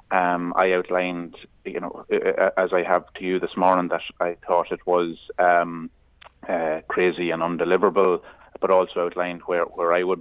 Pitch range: 85-100 Hz